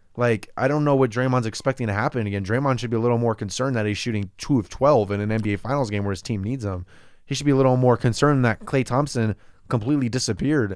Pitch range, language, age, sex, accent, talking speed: 105-130 Hz, English, 20-39, male, American, 250 wpm